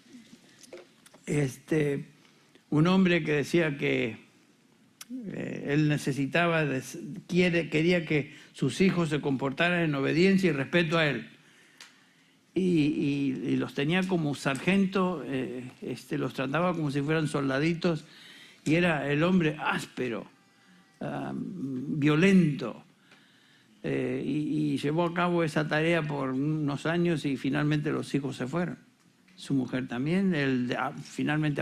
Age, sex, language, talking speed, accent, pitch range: 60-79, male, Spanish, 125 wpm, Argentinian, 140-175 Hz